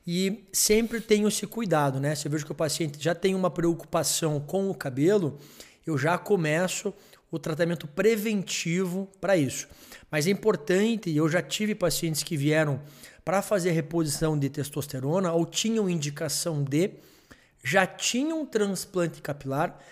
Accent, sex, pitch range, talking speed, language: Brazilian, male, 155-195 Hz, 150 wpm, Portuguese